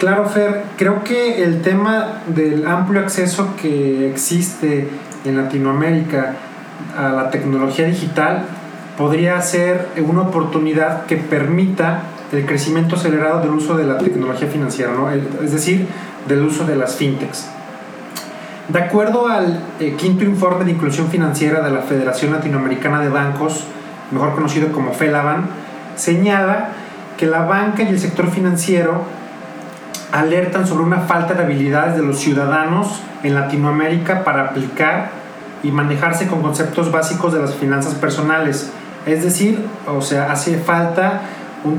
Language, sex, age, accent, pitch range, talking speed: Spanish, male, 30-49, Mexican, 145-180 Hz, 135 wpm